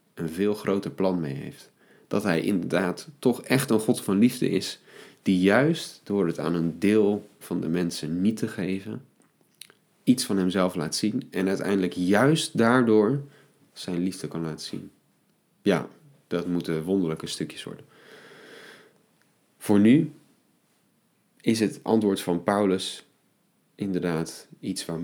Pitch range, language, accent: 85-105 Hz, Dutch, Dutch